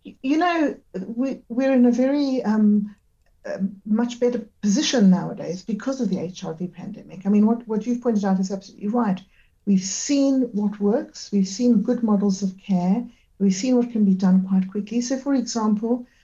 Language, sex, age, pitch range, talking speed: English, female, 60-79, 190-230 Hz, 180 wpm